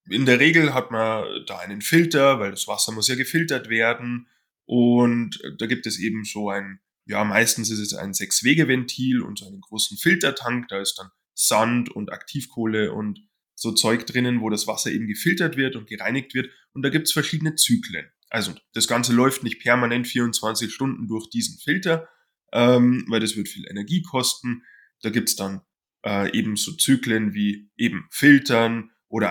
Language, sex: German, male